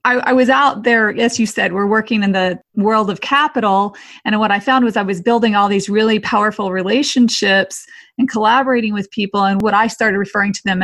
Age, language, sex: 30-49, English, female